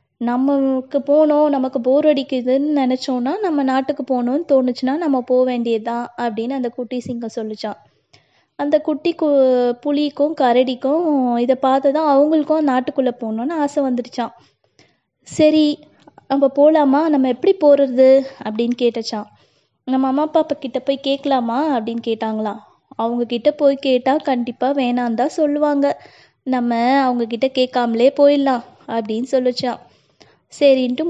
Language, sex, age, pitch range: Tamil, female, 20-39, 240-285 Hz